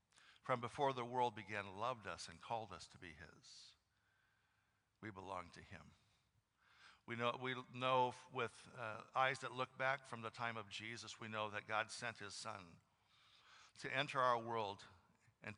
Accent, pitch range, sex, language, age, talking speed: American, 100-120 Hz, male, English, 60-79, 170 wpm